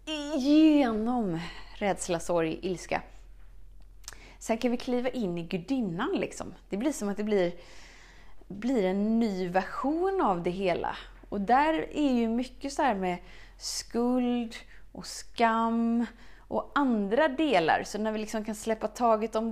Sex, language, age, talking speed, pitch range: female, Swedish, 30-49, 145 wpm, 180-250 Hz